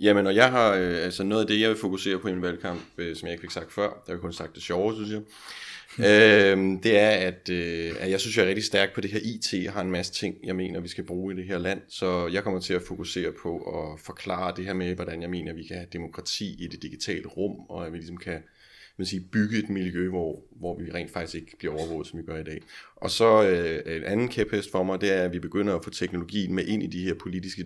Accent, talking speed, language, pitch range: native, 280 wpm, Danish, 85-100 Hz